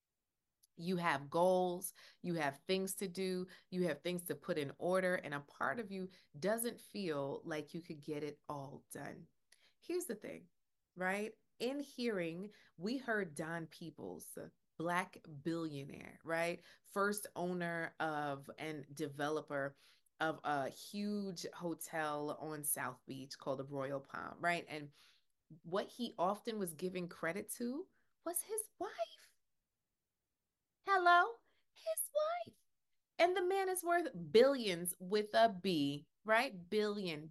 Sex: female